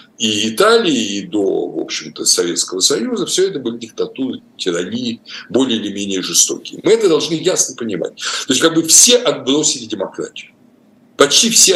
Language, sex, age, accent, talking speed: Russian, male, 60-79, native, 160 wpm